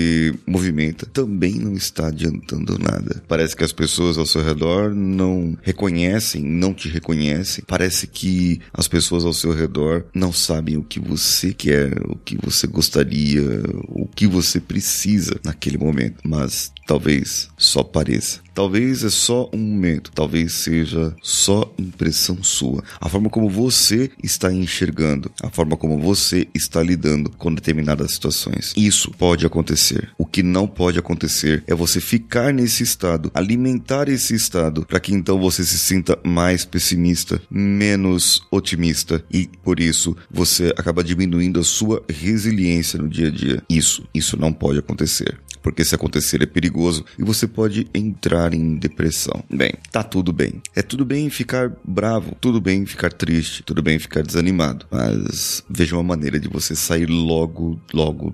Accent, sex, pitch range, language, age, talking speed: Brazilian, male, 80-100 Hz, Portuguese, 30-49, 155 wpm